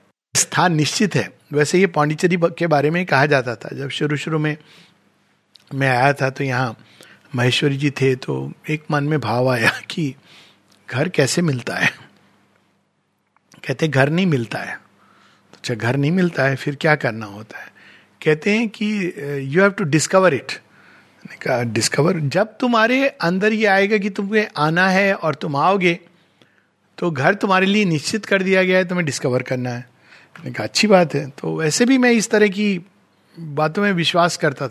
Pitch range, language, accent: 140-185 Hz, Hindi, native